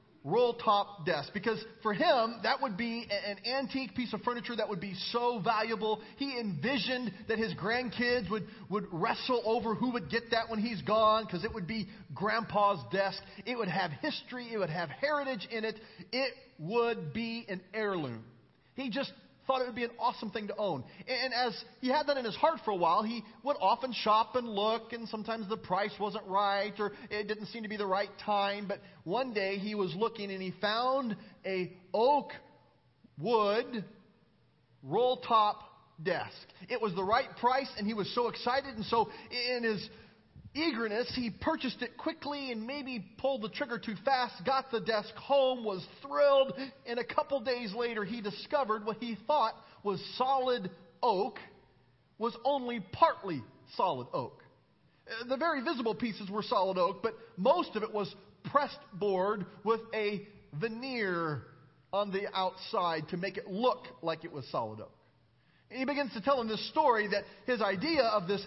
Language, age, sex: English, 30-49, male